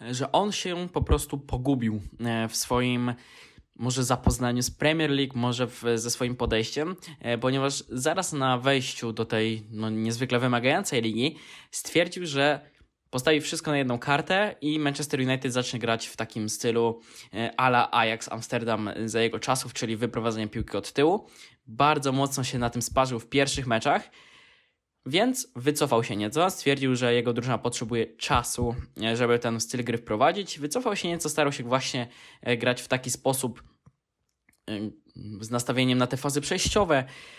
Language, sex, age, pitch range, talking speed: Polish, male, 20-39, 120-145 Hz, 150 wpm